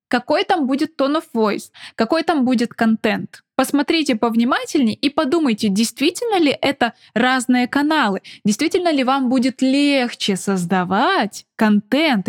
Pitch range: 200-275 Hz